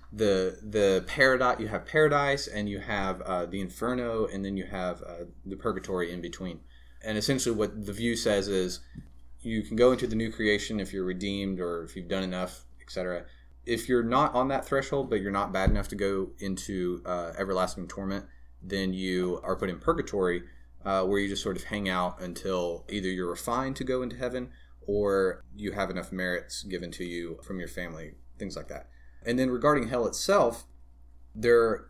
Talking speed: 195 wpm